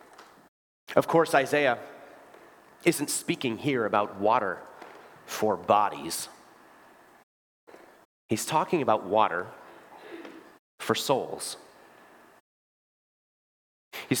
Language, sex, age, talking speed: English, male, 30-49, 70 wpm